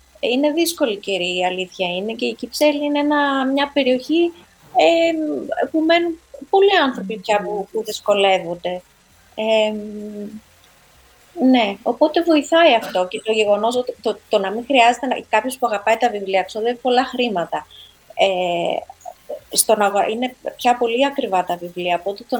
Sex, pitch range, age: female, 190-245 Hz, 20-39